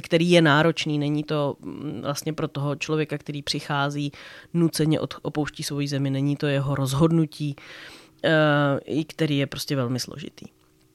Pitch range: 140-155 Hz